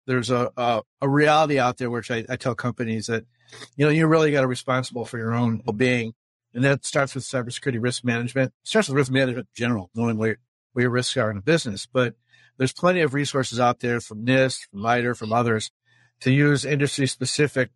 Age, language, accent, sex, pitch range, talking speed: 50-69, English, American, male, 115-135 Hz, 215 wpm